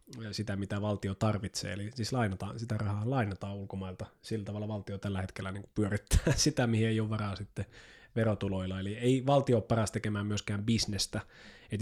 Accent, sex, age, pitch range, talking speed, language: native, male, 20-39, 100-120 Hz, 175 wpm, Finnish